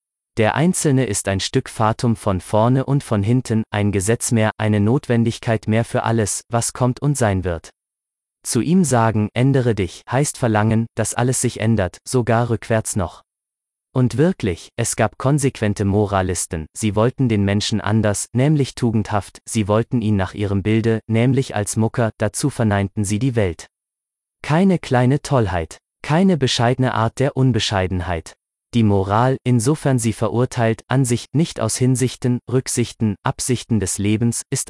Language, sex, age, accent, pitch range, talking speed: German, male, 30-49, German, 105-125 Hz, 150 wpm